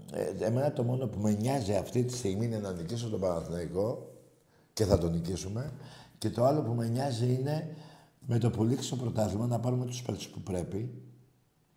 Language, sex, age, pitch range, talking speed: Greek, male, 60-79, 95-125 Hz, 185 wpm